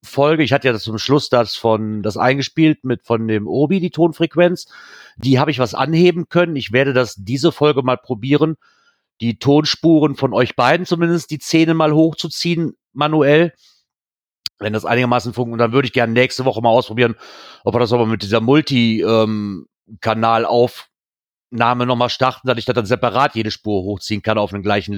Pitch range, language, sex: 120-145 Hz, German, male